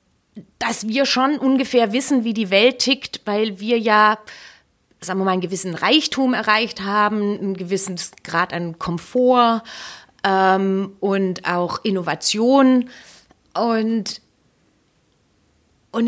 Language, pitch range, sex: German, 200-265 Hz, female